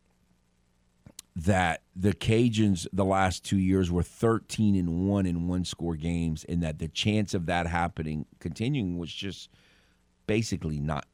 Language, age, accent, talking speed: English, 50-69, American, 140 wpm